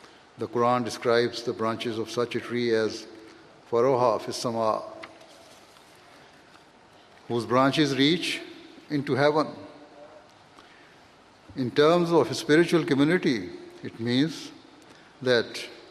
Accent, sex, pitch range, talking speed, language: Indian, male, 120-150 Hz, 100 wpm, English